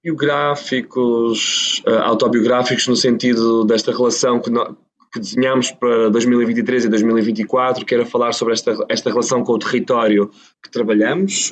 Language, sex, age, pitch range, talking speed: Portuguese, male, 20-39, 115-135 Hz, 140 wpm